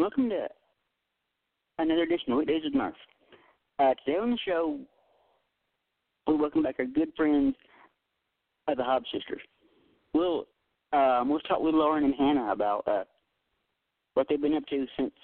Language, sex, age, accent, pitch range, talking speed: English, male, 40-59, American, 130-175 Hz, 155 wpm